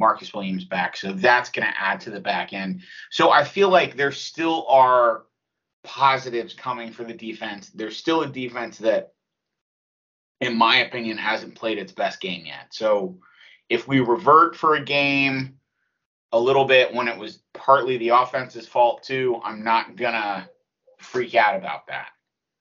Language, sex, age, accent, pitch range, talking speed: English, male, 30-49, American, 115-155 Hz, 170 wpm